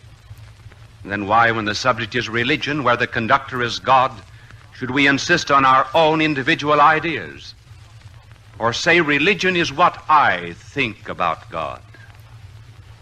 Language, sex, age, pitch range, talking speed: English, male, 60-79, 105-120 Hz, 135 wpm